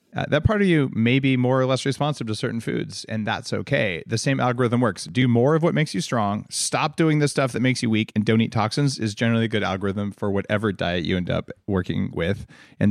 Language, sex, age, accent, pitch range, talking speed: English, male, 30-49, American, 100-125 Hz, 250 wpm